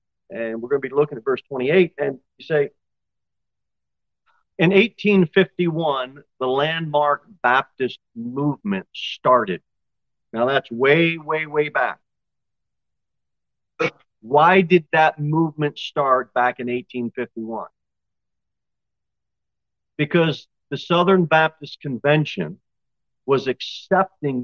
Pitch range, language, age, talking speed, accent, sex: 130-160 Hz, English, 50-69, 100 wpm, American, male